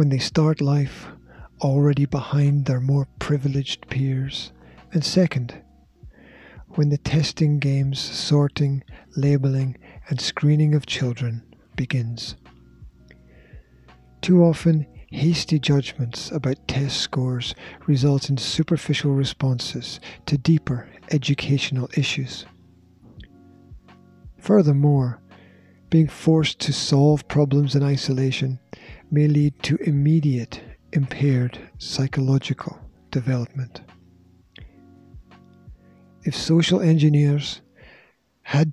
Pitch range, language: 125-145 Hz, English